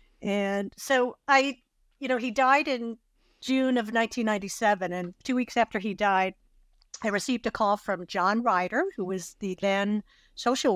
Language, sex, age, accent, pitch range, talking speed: English, female, 50-69, American, 180-220 Hz, 160 wpm